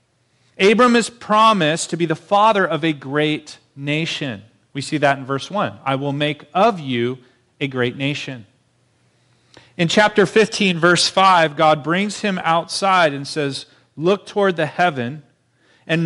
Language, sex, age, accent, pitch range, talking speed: English, male, 40-59, American, 125-165 Hz, 155 wpm